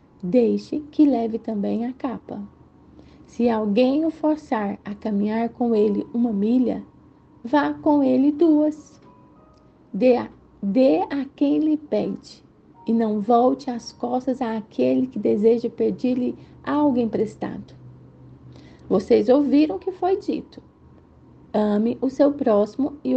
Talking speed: 125 wpm